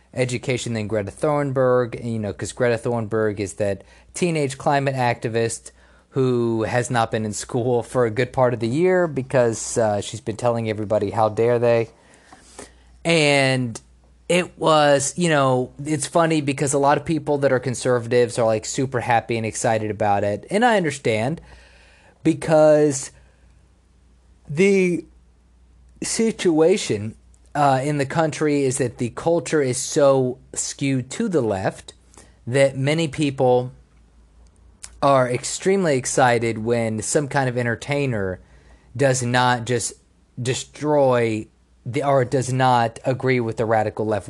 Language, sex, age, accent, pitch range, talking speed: English, male, 30-49, American, 110-140 Hz, 140 wpm